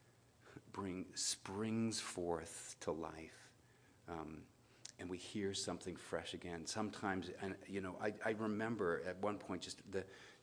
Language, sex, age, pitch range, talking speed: English, male, 50-69, 105-135 Hz, 140 wpm